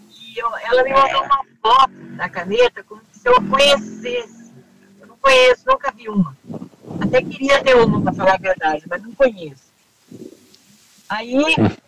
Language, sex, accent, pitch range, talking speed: Portuguese, female, Brazilian, 190-265 Hz, 155 wpm